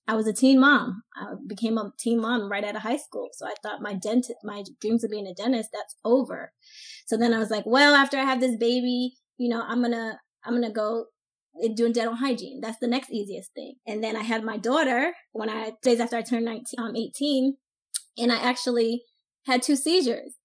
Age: 20-39